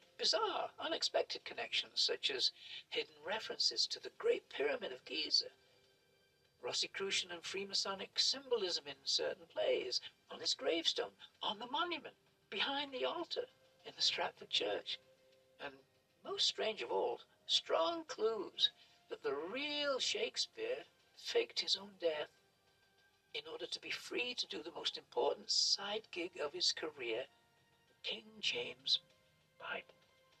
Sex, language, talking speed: male, English, 130 wpm